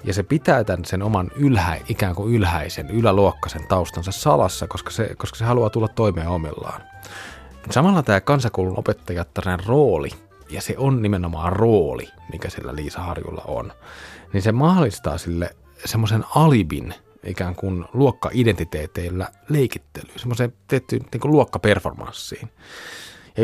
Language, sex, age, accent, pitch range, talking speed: Finnish, male, 30-49, native, 90-115 Hz, 130 wpm